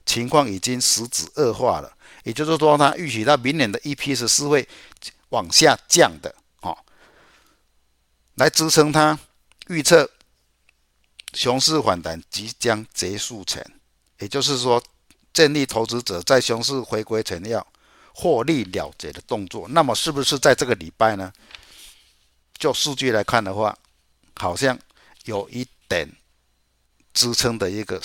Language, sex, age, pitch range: Chinese, male, 50-69, 90-150 Hz